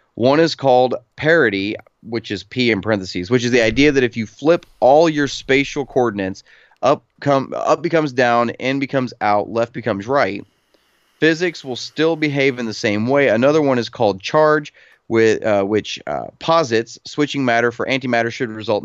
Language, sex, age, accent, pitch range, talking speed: English, male, 30-49, American, 110-140 Hz, 180 wpm